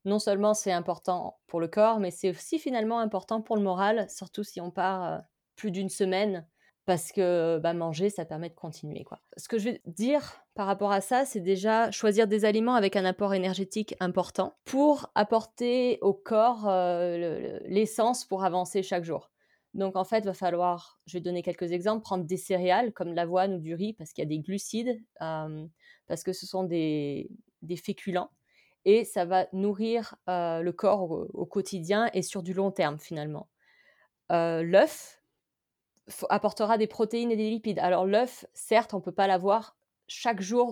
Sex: female